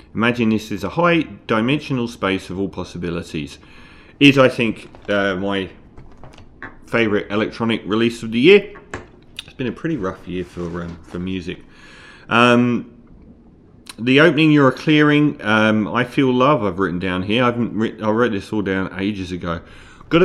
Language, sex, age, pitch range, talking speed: English, male, 40-59, 90-120 Hz, 165 wpm